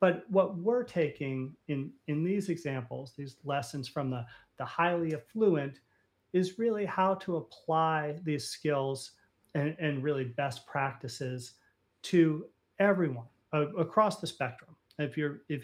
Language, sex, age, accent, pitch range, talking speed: English, male, 40-59, American, 140-180 Hz, 135 wpm